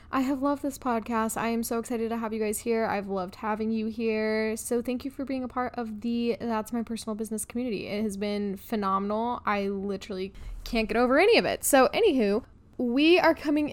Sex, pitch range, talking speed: female, 195-255 Hz, 220 wpm